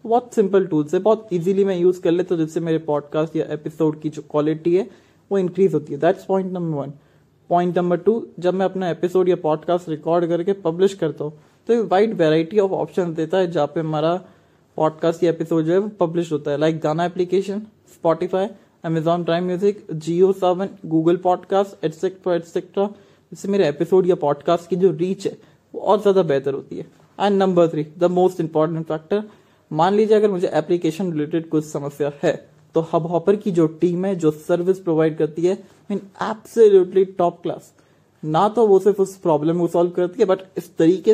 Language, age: English, 20-39